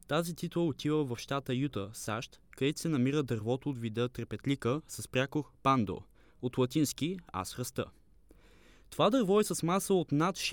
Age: 20-39